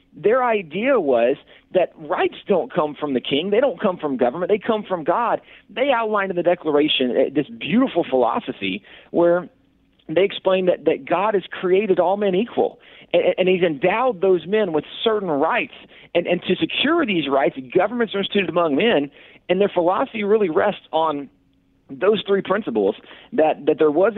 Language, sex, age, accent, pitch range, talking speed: English, male, 40-59, American, 160-215 Hz, 180 wpm